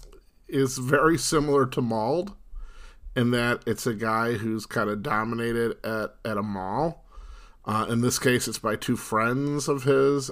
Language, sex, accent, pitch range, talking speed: English, male, American, 105-135 Hz, 165 wpm